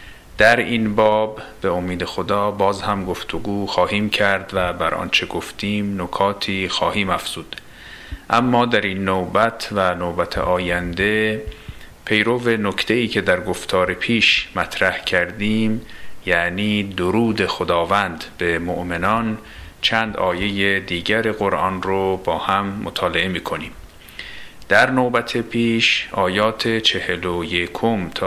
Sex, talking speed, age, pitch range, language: male, 115 wpm, 40-59, 90-110 Hz, Persian